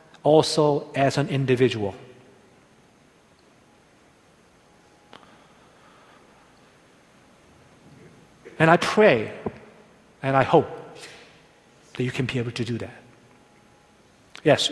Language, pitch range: Korean, 125-155 Hz